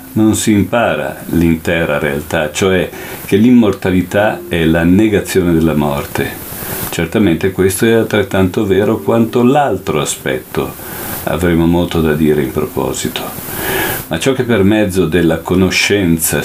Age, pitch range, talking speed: 50-69, 80-110 Hz, 125 wpm